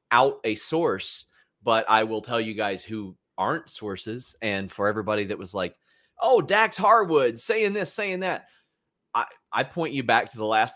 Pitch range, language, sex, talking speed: 100-130 Hz, English, male, 185 wpm